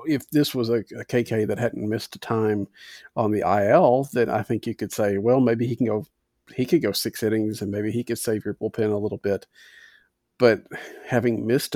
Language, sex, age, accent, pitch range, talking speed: English, male, 40-59, American, 110-135 Hz, 220 wpm